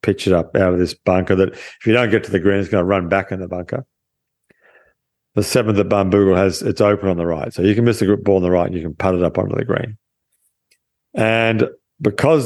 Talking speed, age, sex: 255 wpm, 50-69, male